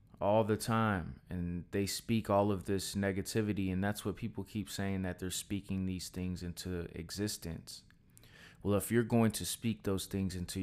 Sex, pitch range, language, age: male, 90-105 Hz, English, 20-39